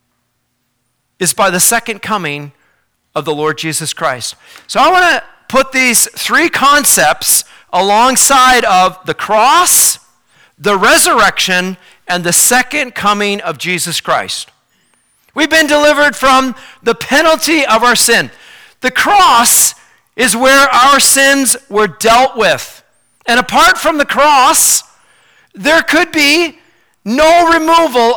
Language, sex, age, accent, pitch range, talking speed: English, male, 40-59, American, 195-275 Hz, 125 wpm